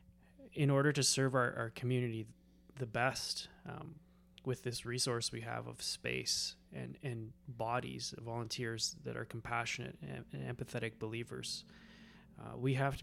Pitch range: 90-135 Hz